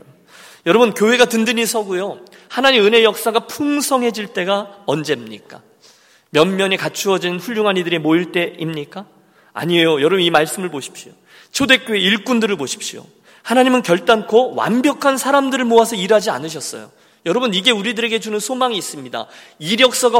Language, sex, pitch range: Korean, male, 170-230 Hz